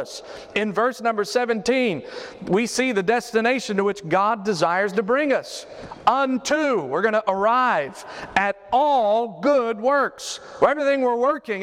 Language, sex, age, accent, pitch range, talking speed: English, male, 40-59, American, 200-255 Hz, 140 wpm